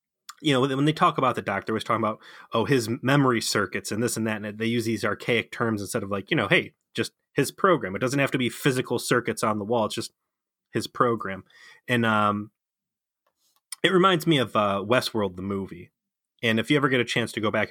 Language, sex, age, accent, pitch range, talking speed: English, male, 30-49, American, 110-125 Hz, 230 wpm